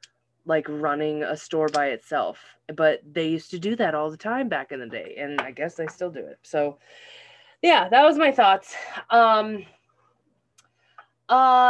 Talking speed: 175 wpm